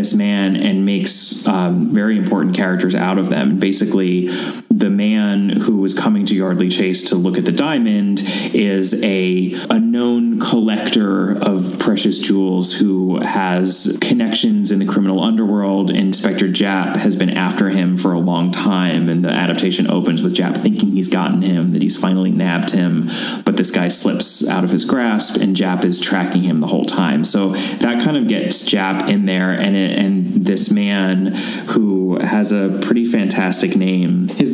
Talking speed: 170 wpm